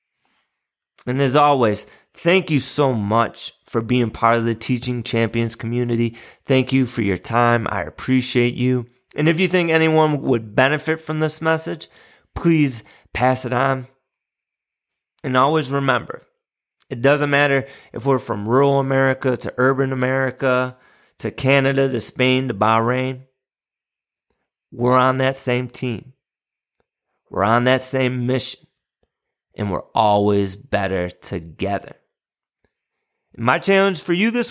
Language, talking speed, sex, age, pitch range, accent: English, 135 wpm, male, 30-49, 120-150 Hz, American